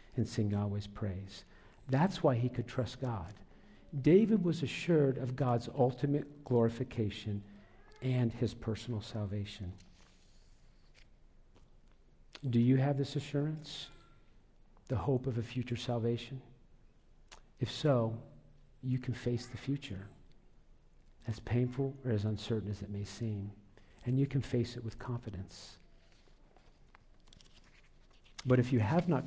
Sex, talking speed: male, 125 wpm